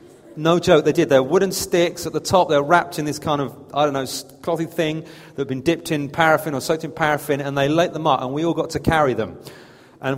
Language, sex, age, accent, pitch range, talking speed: English, male, 30-49, British, 140-160 Hz, 260 wpm